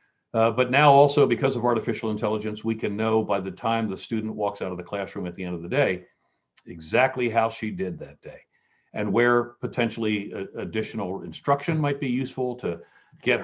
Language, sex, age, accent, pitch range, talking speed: English, male, 50-69, American, 100-130 Hz, 195 wpm